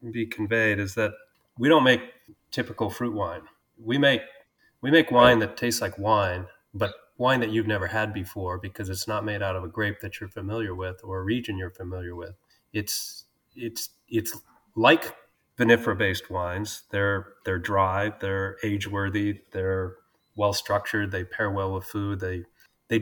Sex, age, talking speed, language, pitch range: male, 30-49, 175 wpm, English, 100-125 Hz